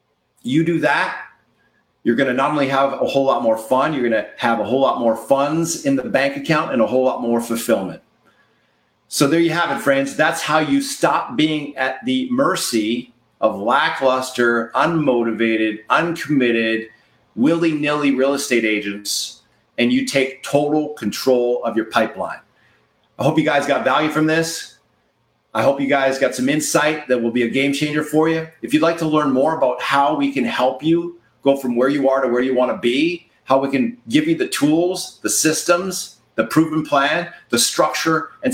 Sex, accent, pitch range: male, American, 130-165 Hz